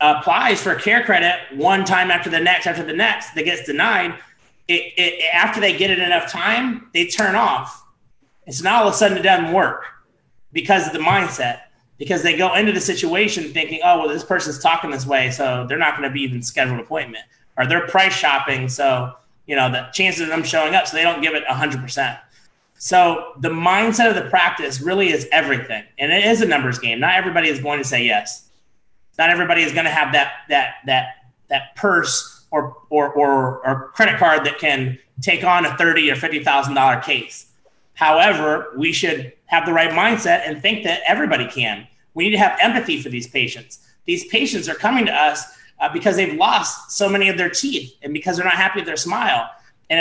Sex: male